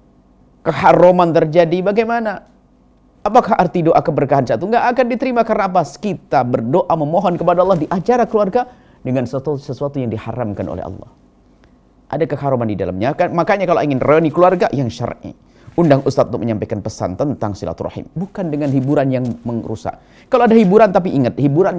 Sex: male